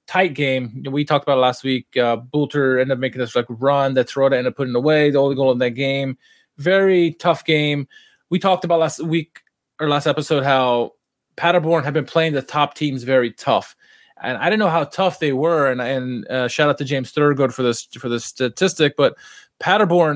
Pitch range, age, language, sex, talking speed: 135-165 Hz, 20-39, English, male, 215 wpm